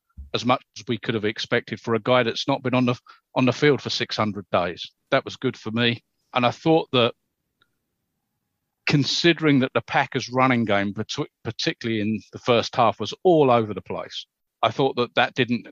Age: 40-59